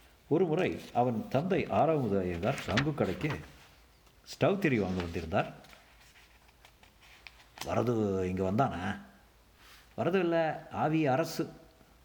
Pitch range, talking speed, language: 95-130 Hz, 95 wpm, Tamil